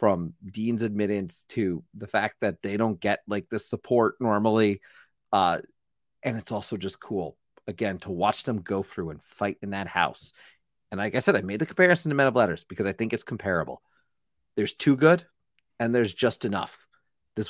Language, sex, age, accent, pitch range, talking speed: English, male, 30-49, American, 105-130 Hz, 190 wpm